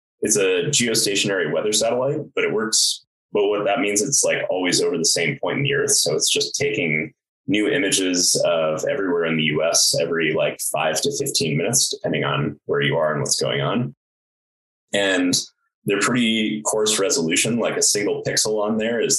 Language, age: English, 20-39